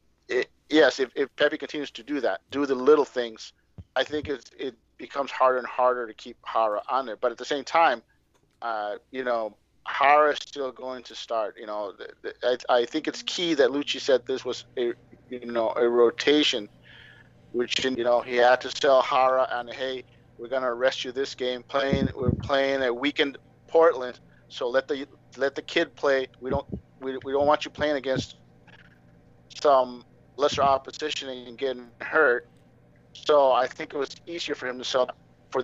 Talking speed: 190 wpm